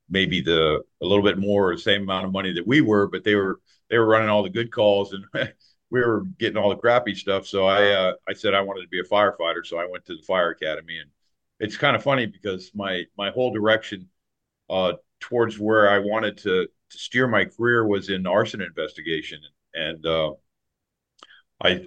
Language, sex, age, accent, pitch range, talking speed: English, male, 50-69, American, 90-105 Hz, 210 wpm